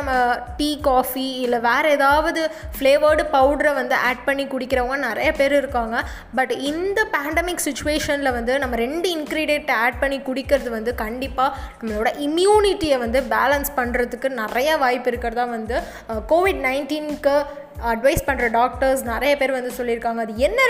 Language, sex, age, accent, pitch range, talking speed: Tamil, female, 20-39, native, 245-300 Hz, 140 wpm